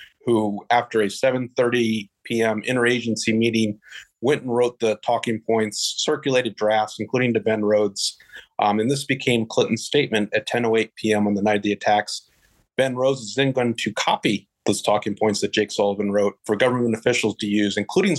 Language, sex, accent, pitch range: English, male, American, 110-135 Hz